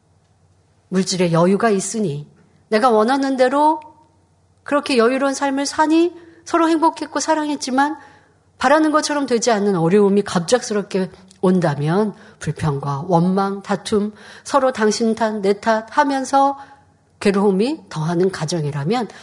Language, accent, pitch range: Korean, native, 180-250 Hz